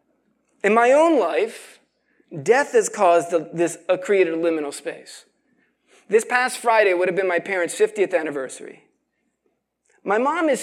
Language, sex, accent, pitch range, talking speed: English, male, American, 185-260 Hz, 145 wpm